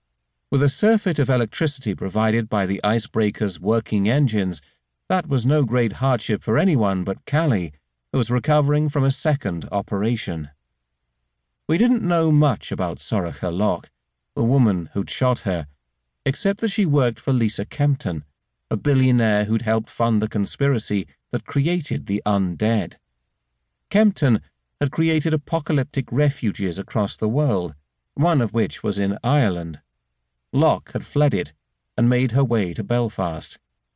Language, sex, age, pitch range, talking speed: English, male, 40-59, 80-135 Hz, 145 wpm